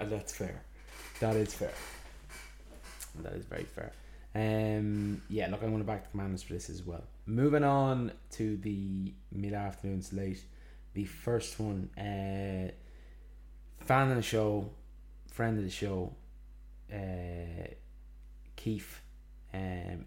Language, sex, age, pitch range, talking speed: English, male, 20-39, 90-110 Hz, 125 wpm